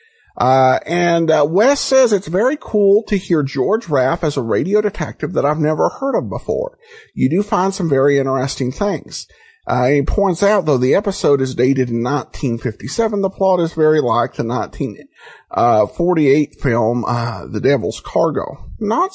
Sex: male